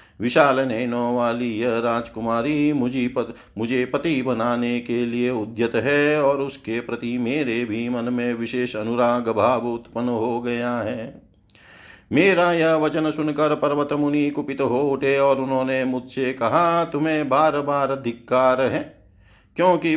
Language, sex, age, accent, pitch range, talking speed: Hindi, male, 50-69, native, 115-145 Hz, 140 wpm